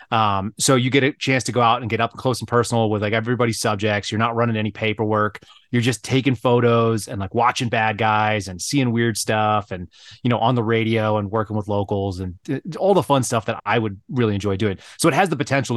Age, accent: 30-49, American